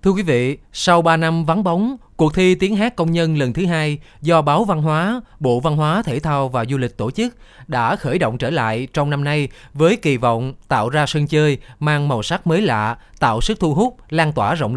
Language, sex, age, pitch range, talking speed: Vietnamese, male, 20-39, 130-175 Hz, 235 wpm